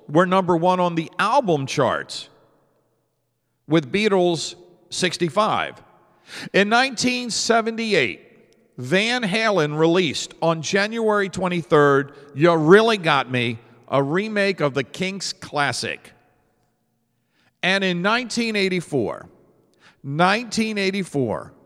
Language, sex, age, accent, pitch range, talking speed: English, male, 50-69, American, 140-200 Hz, 85 wpm